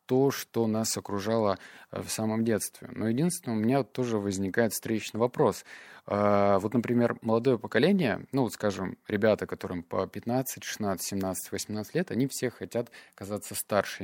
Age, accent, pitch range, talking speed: 20-39, native, 100-120 Hz, 150 wpm